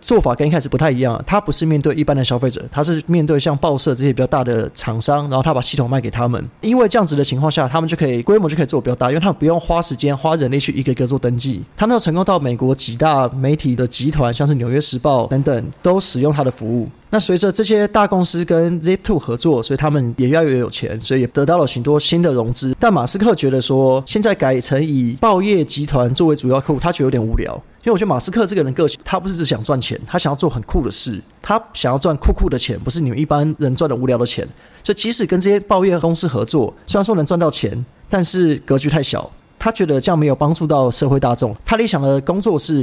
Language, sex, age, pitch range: Chinese, male, 20-39, 130-170 Hz